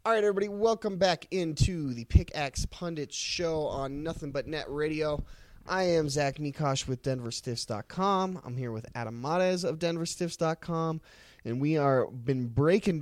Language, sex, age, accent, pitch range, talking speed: English, male, 20-39, American, 130-165 Hz, 150 wpm